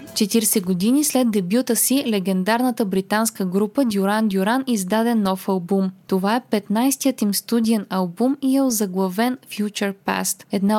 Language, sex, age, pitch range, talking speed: Bulgarian, female, 20-39, 195-235 Hz, 140 wpm